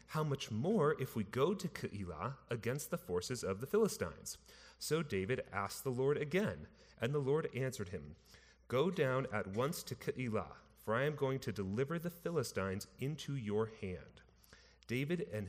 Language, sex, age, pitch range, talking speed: English, male, 30-49, 100-140 Hz, 170 wpm